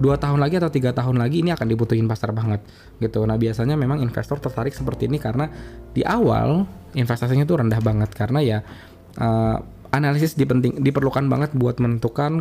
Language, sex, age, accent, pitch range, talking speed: Indonesian, male, 20-39, native, 115-140 Hz, 170 wpm